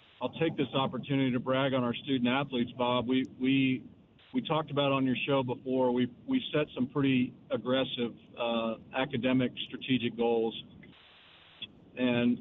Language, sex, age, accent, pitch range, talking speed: English, male, 40-59, American, 120-140 Hz, 145 wpm